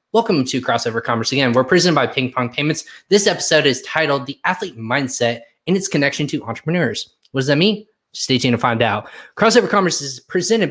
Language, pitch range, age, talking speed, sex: English, 125-165 Hz, 20-39, 200 wpm, male